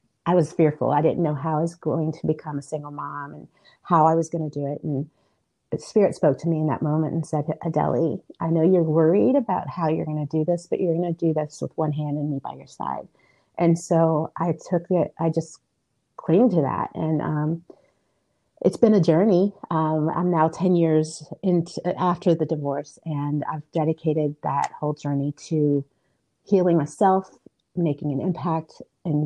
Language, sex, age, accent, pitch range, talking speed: English, female, 30-49, American, 150-170 Hz, 195 wpm